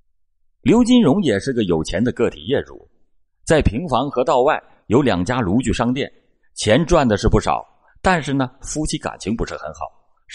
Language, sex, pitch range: Chinese, male, 80-125 Hz